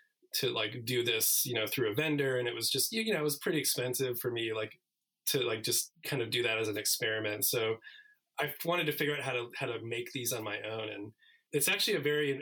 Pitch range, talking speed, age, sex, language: 115-160 Hz, 250 wpm, 20-39, male, English